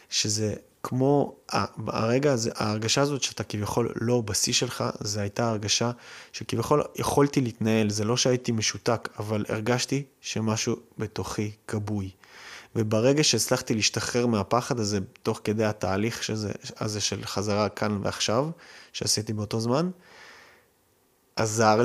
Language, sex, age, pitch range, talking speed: Hebrew, male, 20-39, 105-125 Hz, 120 wpm